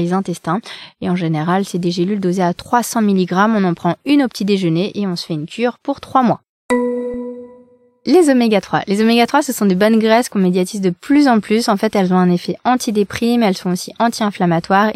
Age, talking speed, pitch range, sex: 20-39, 215 wpm, 185-235 Hz, female